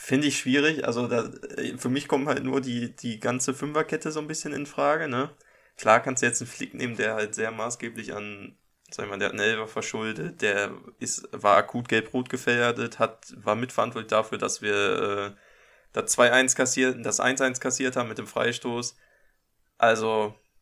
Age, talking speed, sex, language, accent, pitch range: 20-39, 185 wpm, male, German, German, 110-130 Hz